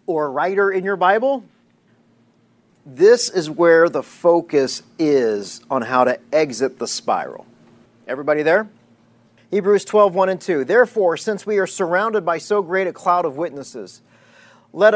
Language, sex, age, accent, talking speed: English, male, 40-59, American, 150 wpm